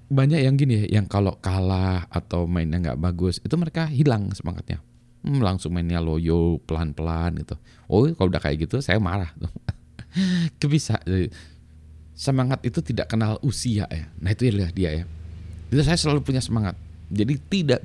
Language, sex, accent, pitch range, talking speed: Indonesian, male, native, 90-120 Hz, 150 wpm